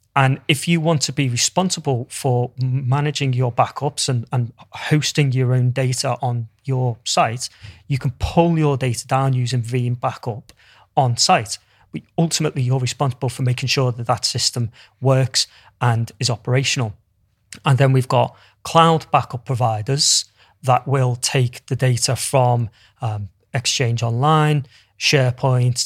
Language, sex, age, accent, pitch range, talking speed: English, male, 30-49, British, 120-140 Hz, 140 wpm